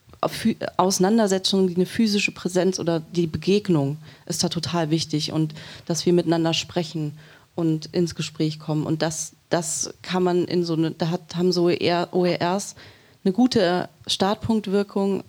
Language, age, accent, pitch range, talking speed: German, 30-49, German, 155-180 Hz, 135 wpm